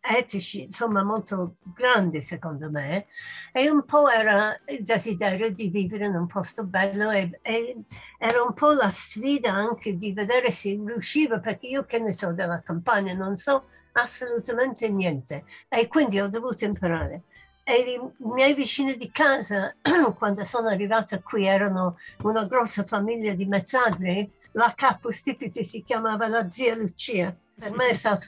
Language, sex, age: Italian, female, 60-79